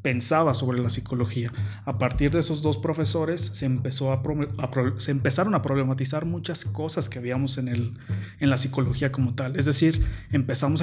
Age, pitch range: 30-49, 115-140 Hz